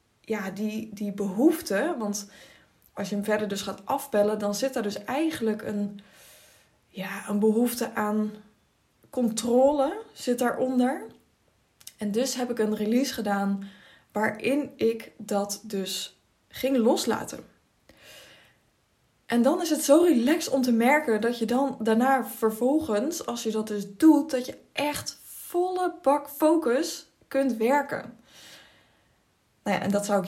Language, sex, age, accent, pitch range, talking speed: Dutch, female, 20-39, Dutch, 205-260 Hz, 135 wpm